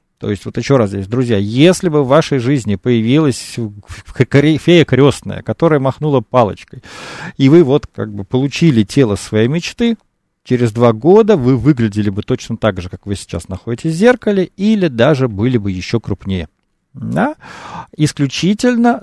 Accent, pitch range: native, 110-160 Hz